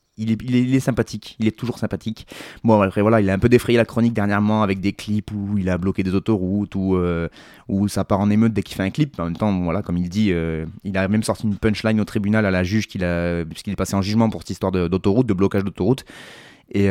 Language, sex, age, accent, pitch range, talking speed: French, male, 20-39, French, 95-115 Hz, 280 wpm